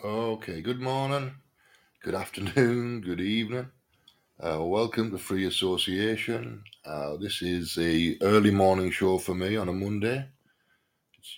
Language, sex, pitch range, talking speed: English, male, 85-110 Hz, 130 wpm